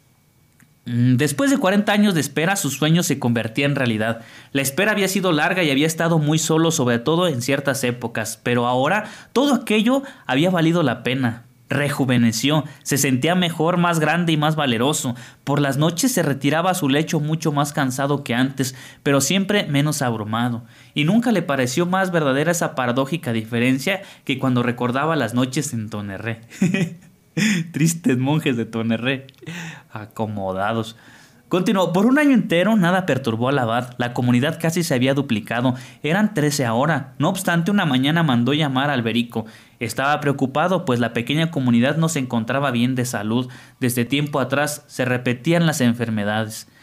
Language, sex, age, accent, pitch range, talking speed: Spanish, male, 30-49, Mexican, 120-165 Hz, 165 wpm